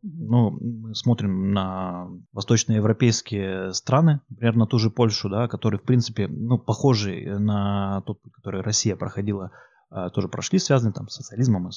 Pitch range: 100-120 Hz